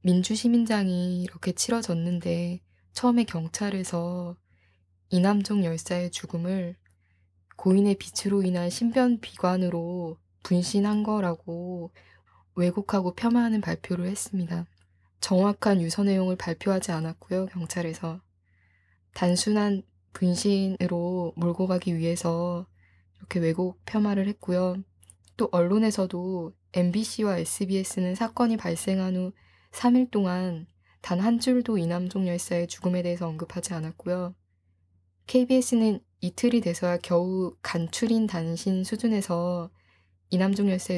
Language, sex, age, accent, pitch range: Korean, female, 20-39, native, 170-200 Hz